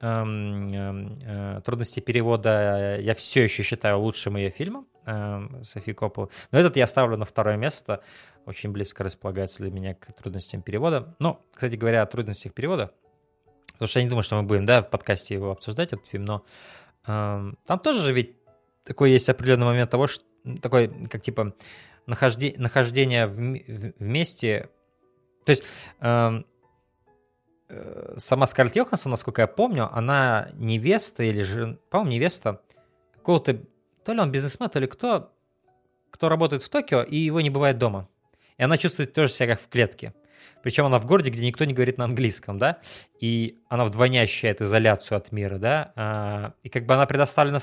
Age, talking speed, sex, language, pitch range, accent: 20-39, 160 wpm, male, Russian, 105-135 Hz, native